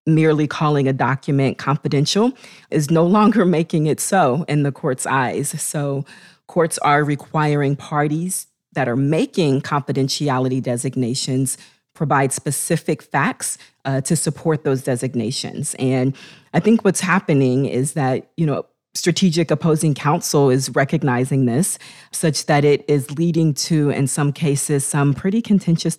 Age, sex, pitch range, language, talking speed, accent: 40-59, female, 135-165 Hz, English, 140 wpm, American